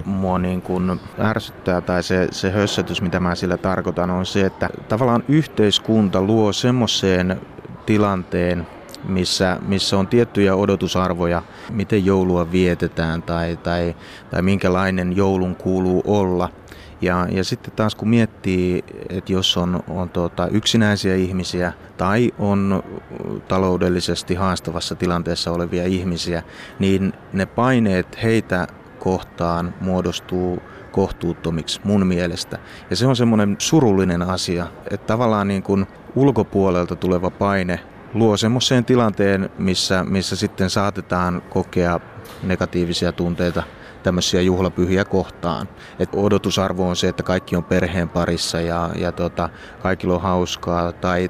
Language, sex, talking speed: Finnish, male, 125 wpm